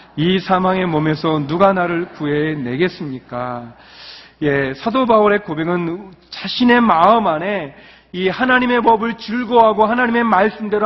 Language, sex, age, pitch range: Korean, male, 40-59, 175-245 Hz